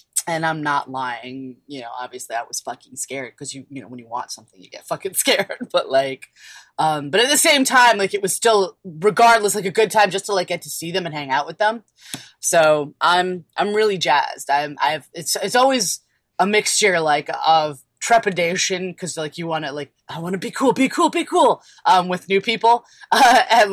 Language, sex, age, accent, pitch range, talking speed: English, female, 20-39, American, 135-185 Hz, 225 wpm